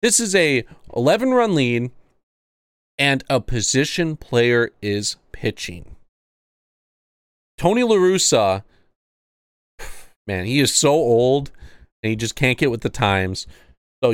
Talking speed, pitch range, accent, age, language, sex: 115 wpm, 105-140 Hz, American, 40-59, English, male